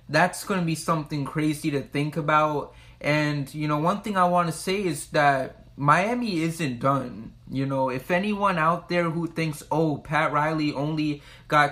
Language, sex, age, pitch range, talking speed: English, male, 20-39, 150-170 Hz, 185 wpm